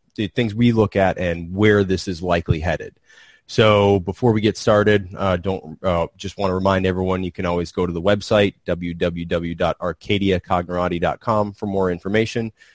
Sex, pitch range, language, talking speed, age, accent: male, 90-100 Hz, English, 165 wpm, 20-39, American